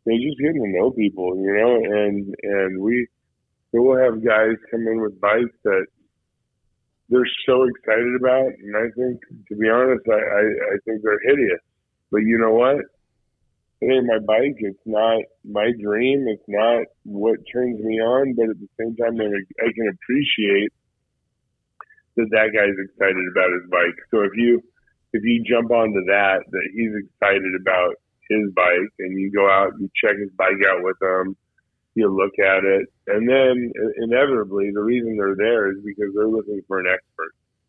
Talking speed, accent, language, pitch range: 180 wpm, American, English, 100-120 Hz